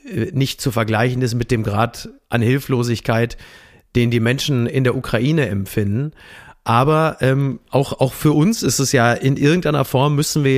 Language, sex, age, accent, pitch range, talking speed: German, male, 40-59, German, 125-160 Hz, 170 wpm